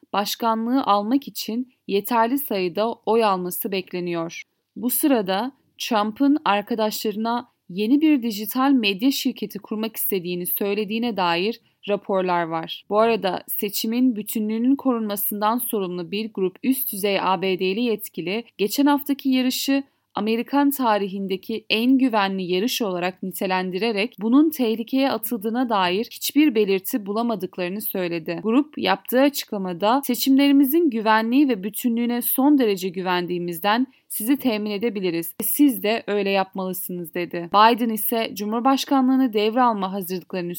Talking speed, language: 115 wpm, Turkish